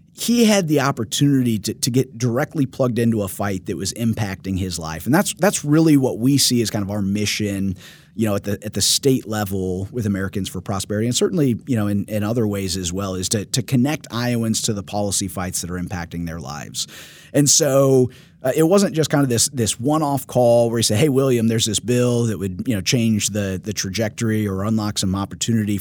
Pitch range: 105-140 Hz